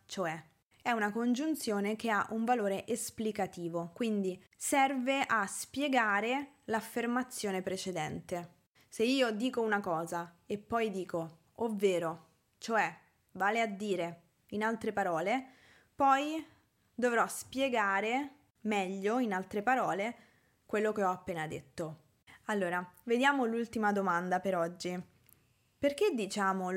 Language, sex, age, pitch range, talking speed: Italian, female, 20-39, 185-250 Hz, 115 wpm